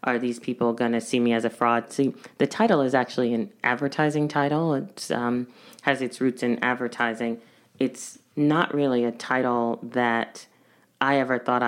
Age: 30-49